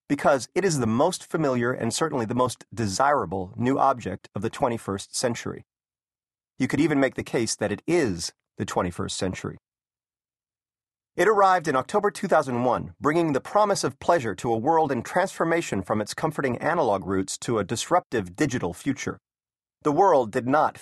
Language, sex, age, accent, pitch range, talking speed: English, male, 30-49, American, 110-160 Hz, 165 wpm